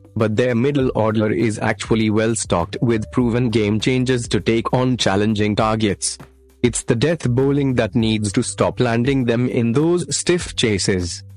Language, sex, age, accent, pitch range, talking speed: Hindi, male, 30-49, native, 100-120 Hz, 165 wpm